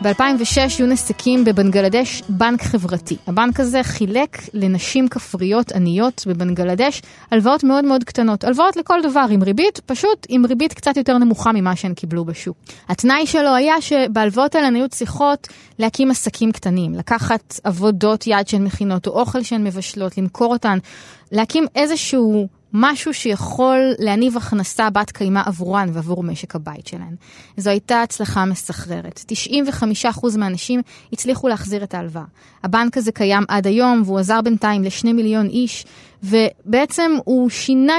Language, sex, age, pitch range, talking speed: Hebrew, female, 20-39, 200-265 Hz, 140 wpm